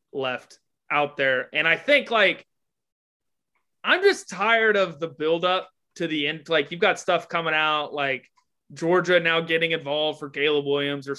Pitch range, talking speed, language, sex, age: 135-170 Hz, 165 wpm, English, male, 20-39